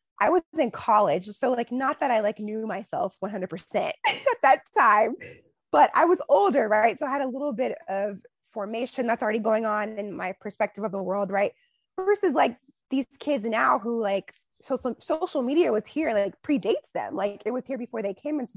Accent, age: American, 20-39